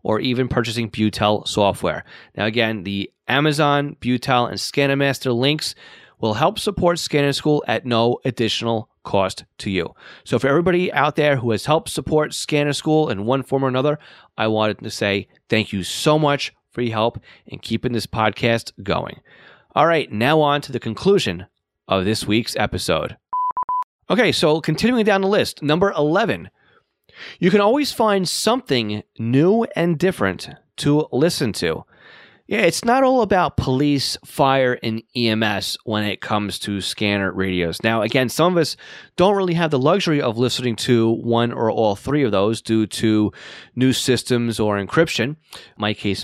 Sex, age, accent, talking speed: male, 30-49, American, 165 wpm